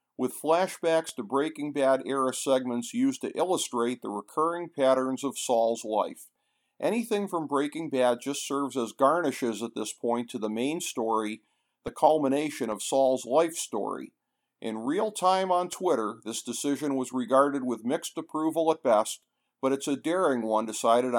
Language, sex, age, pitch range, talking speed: English, male, 50-69, 120-160 Hz, 160 wpm